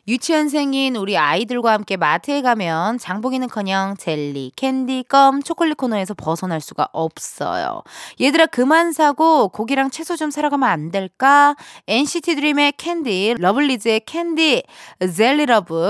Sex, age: female, 20-39